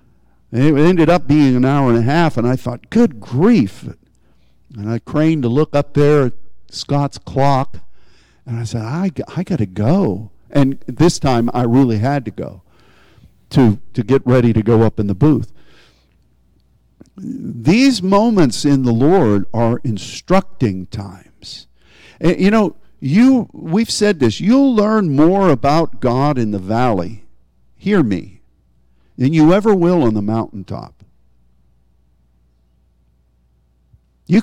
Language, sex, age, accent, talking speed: English, male, 50-69, American, 145 wpm